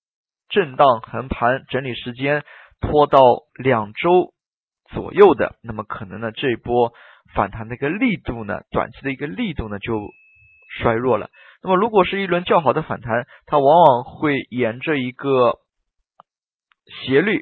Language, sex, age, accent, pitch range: Chinese, male, 20-39, native, 120-160 Hz